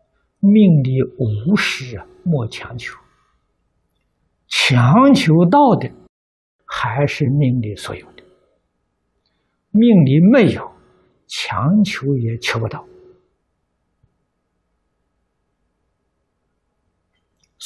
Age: 60-79